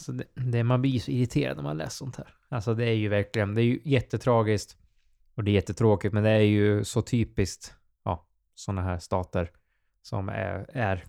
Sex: male